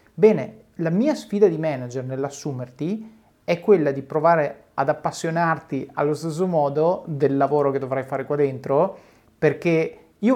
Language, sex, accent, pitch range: Italian, male, native, 135-170 Hz